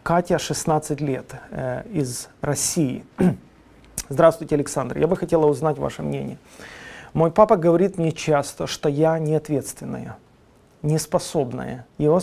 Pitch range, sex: 140-170 Hz, male